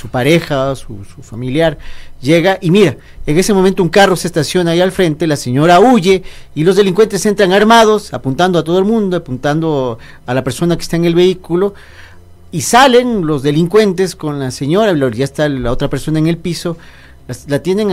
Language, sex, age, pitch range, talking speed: Spanish, male, 40-59, 140-190 Hz, 195 wpm